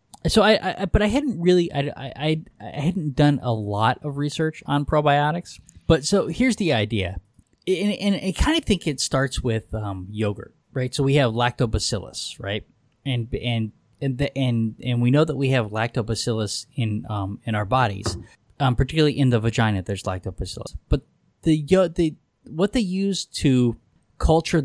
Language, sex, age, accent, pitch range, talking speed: English, male, 20-39, American, 110-150 Hz, 175 wpm